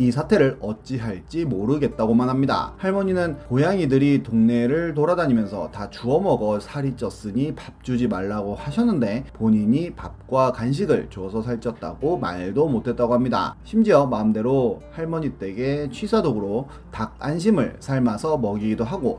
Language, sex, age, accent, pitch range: Korean, male, 30-49, native, 110-150 Hz